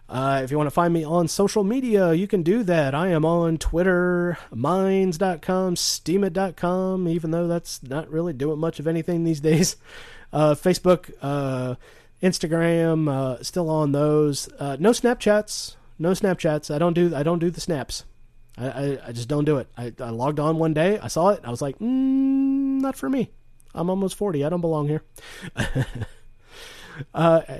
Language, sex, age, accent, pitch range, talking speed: English, male, 30-49, American, 130-175 Hz, 180 wpm